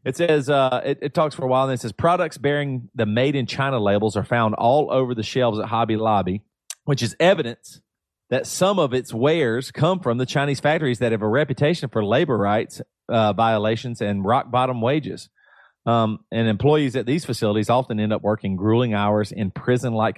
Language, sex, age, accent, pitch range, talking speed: English, male, 40-59, American, 110-140 Hz, 205 wpm